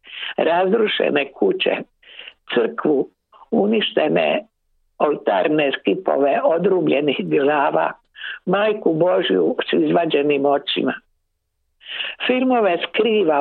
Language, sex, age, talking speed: Croatian, female, 60-79, 65 wpm